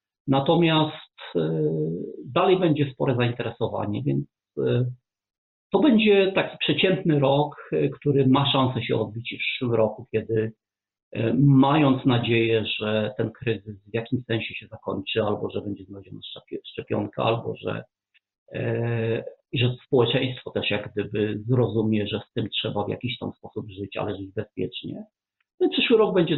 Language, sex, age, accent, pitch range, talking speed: Polish, male, 50-69, native, 110-140 Hz, 140 wpm